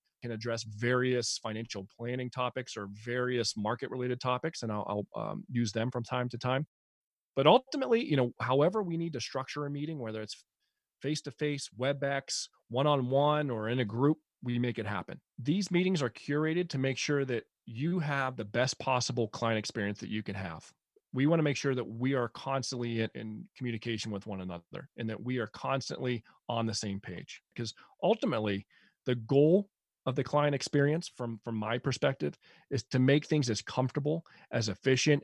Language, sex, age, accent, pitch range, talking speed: English, male, 30-49, American, 110-145 Hz, 180 wpm